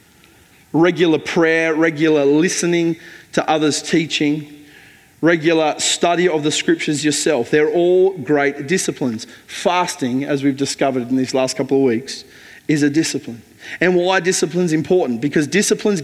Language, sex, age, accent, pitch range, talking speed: English, male, 30-49, Australian, 145-185 Hz, 135 wpm